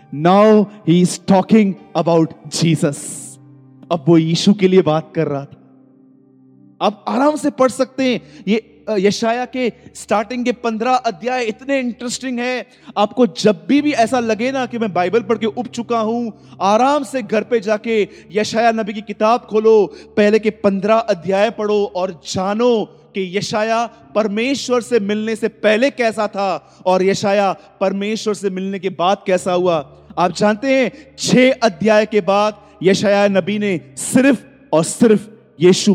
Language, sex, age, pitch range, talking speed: Hindi, male, 30-49, 185-220 Hz, 155 wpm